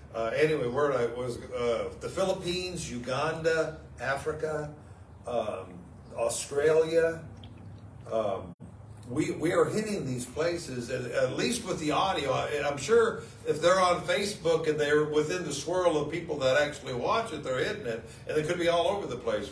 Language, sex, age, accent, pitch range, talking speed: English, male, 60-79, American, 130-185 Hz, 165 wpm